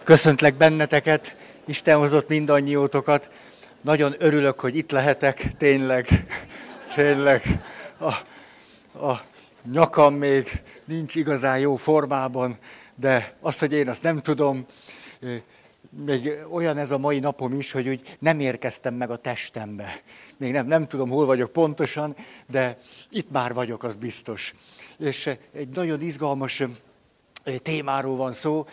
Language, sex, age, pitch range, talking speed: Hungarian, male, 60-79, 125-150 Hz, 125 wpm